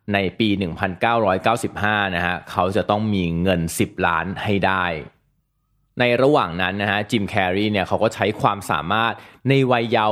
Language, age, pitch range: Thai, 20-39, 100-120 Hz